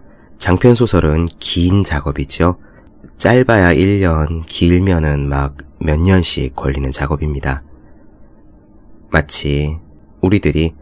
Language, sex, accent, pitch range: Korean, male, native, 75-95 Hz